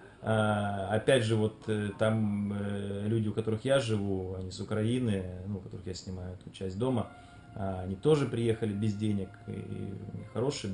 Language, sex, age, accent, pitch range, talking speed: Russian, male, 20-39, native, 100-120 Hz, 150 wpm